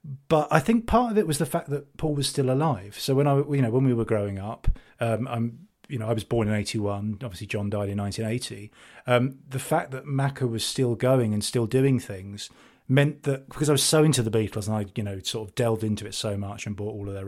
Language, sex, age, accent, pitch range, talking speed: English, male, 30-49, British, 110-145 Hz, 260 wpm